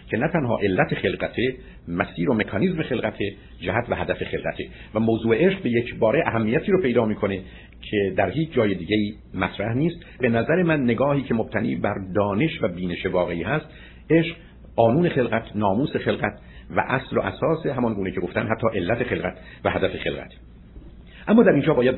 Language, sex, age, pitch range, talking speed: Persian, male, 50-69, 100-150 Hz, 175 wpm